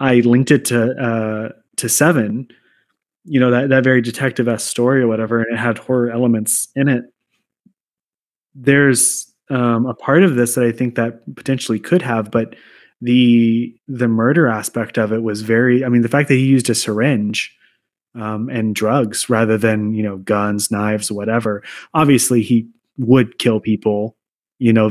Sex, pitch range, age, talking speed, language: male, 115-130 Hz, 20-39, 175 wpm, English